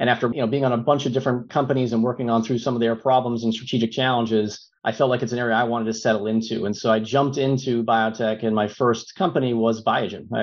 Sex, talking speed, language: male, 265 wpm, English